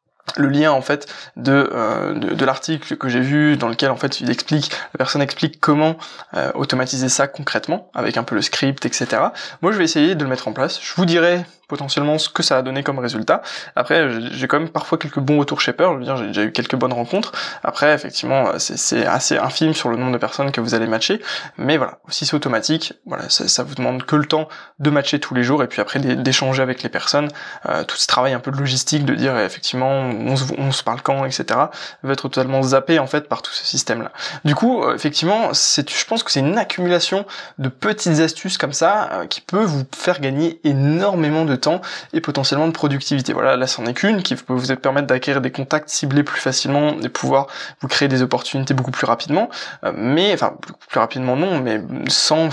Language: French